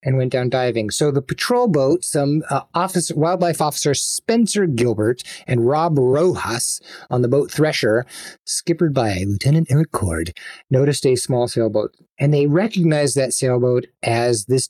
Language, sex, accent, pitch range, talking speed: English, male, American, 125-170 Hz, 150 wpm